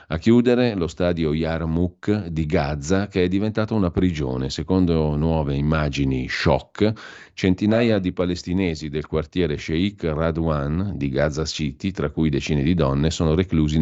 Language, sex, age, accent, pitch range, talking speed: Italian, male, 40-59, native, 70-90 Hz, 145 wpm